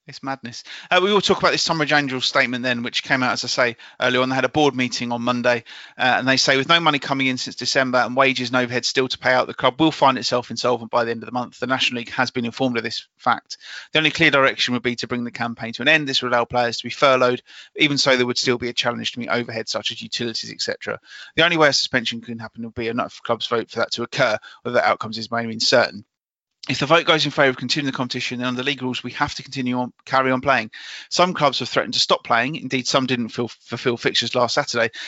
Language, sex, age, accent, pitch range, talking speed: English, male, 30-49, British, 120-145 Hz, 280 wpm